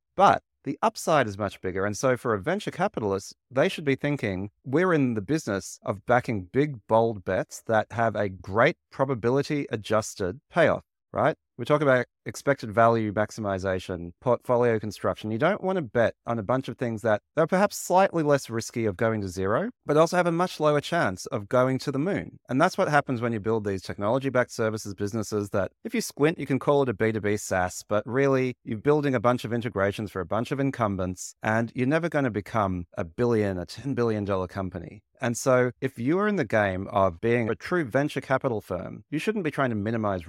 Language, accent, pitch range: English, Australian, 100-140 Hz